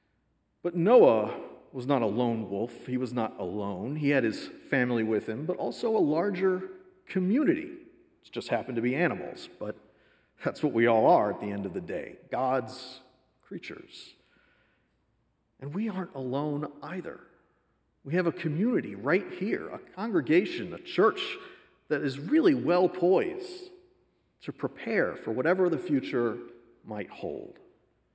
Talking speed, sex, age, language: 150 wpm, male, 40-59, English